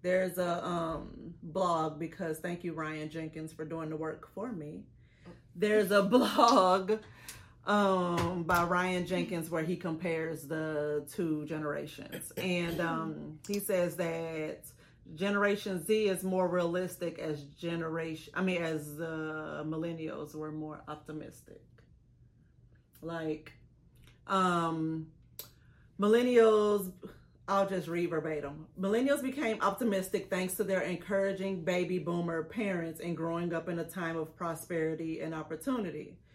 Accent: American